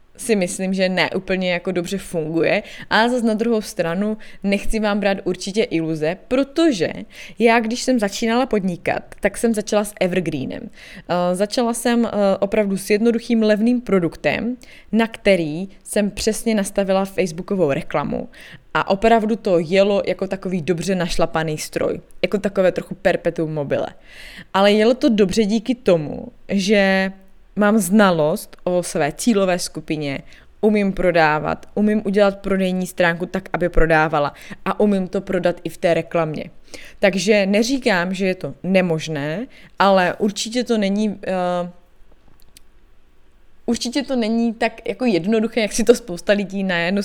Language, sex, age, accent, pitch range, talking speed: Czech, female, 20-39, native, 175-215 Hz, 140 wpm